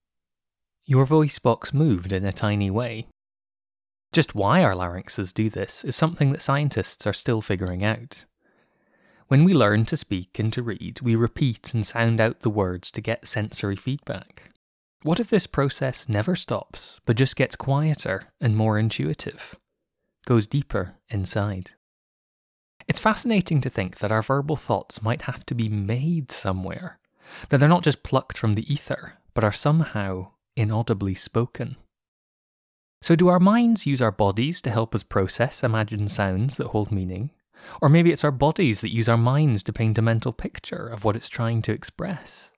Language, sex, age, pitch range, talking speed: English, male, 20-39, 105-140 Hz, 170 wpm